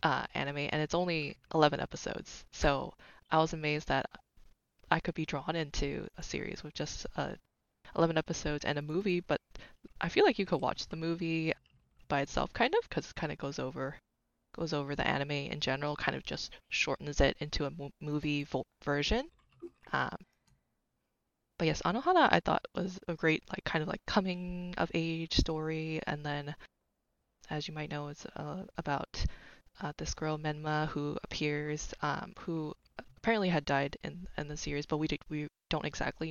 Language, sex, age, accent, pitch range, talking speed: English, female, 20-39, American, 145-165 Hz, 180 wpm